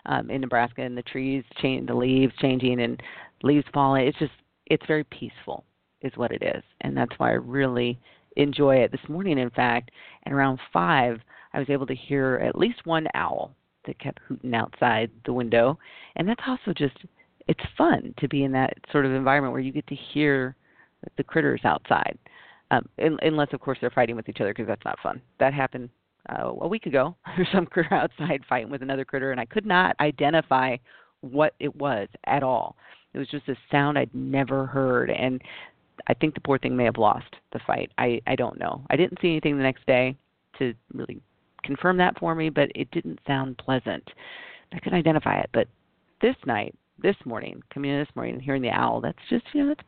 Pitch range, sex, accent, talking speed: 130-150 Hz, female, American, 205 wpm